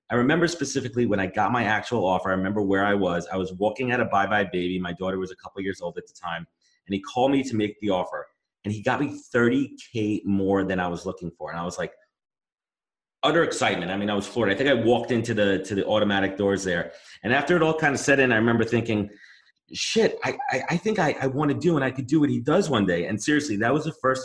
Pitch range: 95-120 Hz